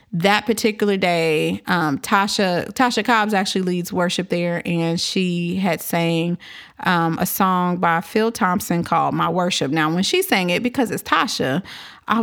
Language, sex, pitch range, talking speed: English, female, 175-240 Hz, 160 wpm